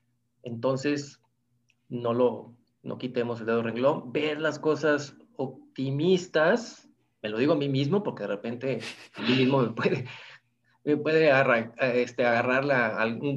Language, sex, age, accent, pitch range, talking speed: Spanish, male, 30-49, Mexican, 125-170 Hz, 145 wpm